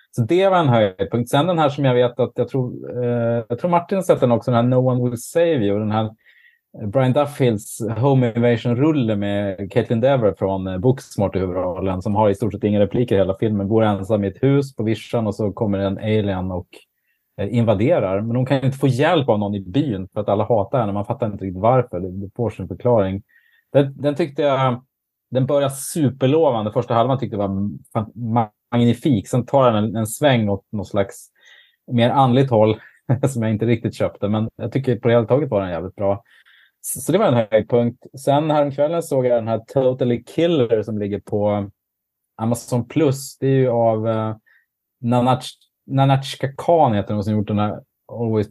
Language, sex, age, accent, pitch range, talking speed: Swedish, male, 30-49, Norwegian, 105-130 Hz, 210 wpm